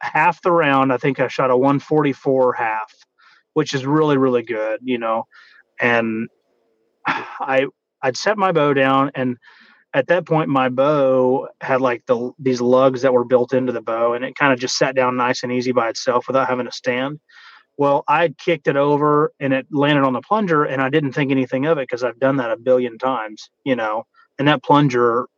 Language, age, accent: English, 30-49, American